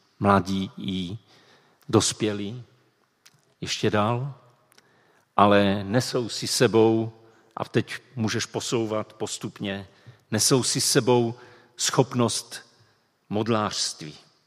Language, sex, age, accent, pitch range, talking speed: Czech, male, 50-69, native, 105-130 Hz, 80 wpm